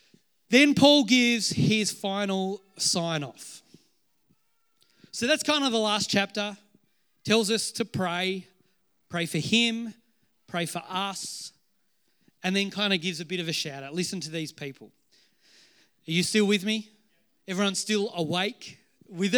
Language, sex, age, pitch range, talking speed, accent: English, male, 30-49, 180-235 Hz, 140 wpm, Australian